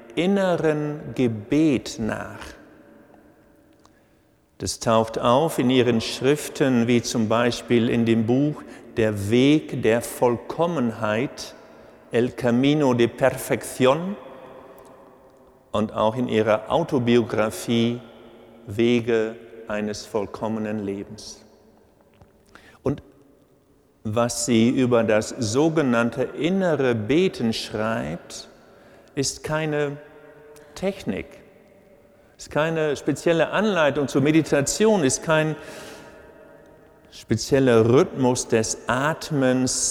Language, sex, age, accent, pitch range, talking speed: German, male, 50-69, German, 115-150 Hz, 85 wpm